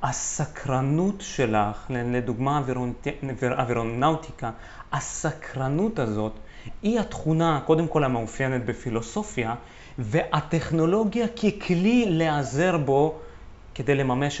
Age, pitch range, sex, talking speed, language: 30-49, 140-215 Hz, male, 75 wpm, Hebrew